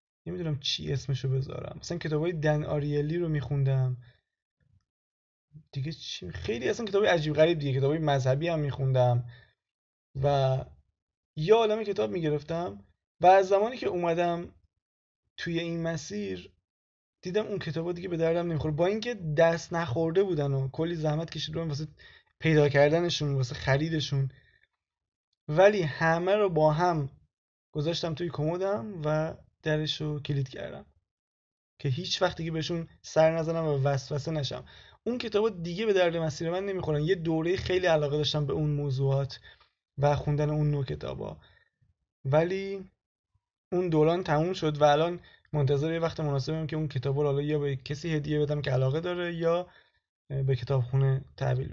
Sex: male